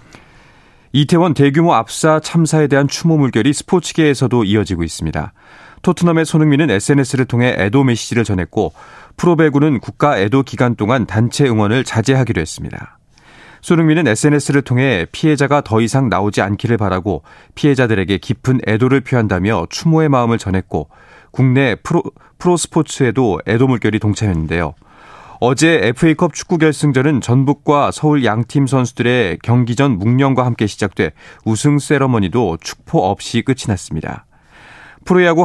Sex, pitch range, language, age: male, 110-155 Hz, Korean, 30-49